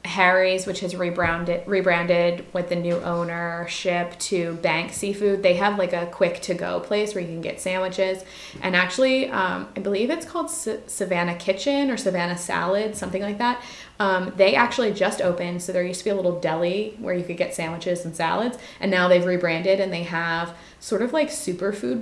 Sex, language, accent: female, English, American